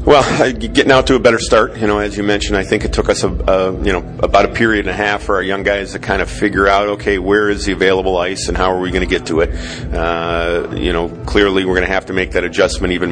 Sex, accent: male, American